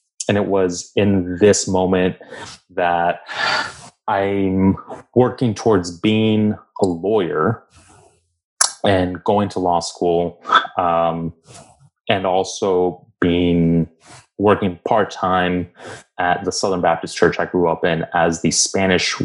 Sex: male